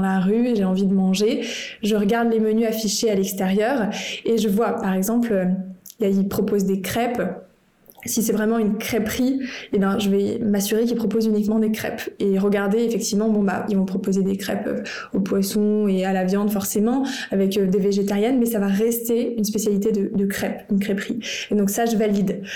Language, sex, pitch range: French, female, 200-230 Hz